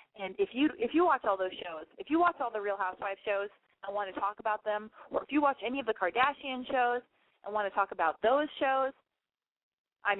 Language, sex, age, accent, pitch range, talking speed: English, female, 30-49, American, 200-300 Hz, 235 wpm